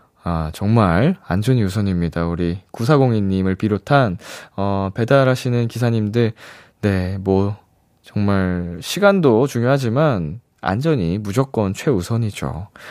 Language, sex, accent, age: Korean, male, native, 20-39